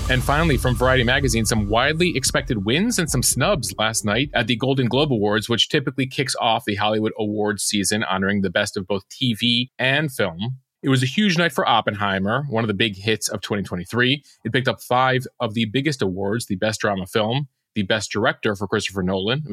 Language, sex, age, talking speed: English, male, 30-49, 210 wpm